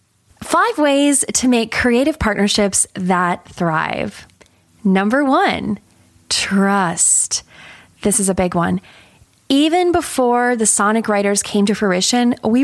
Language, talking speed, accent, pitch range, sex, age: English, 120 wpm, American, 210-310 Hz, female, 20-39